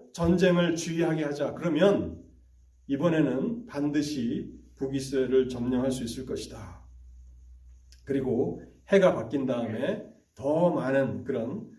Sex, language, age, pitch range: male, Korean, 40-59, 110-155 Hz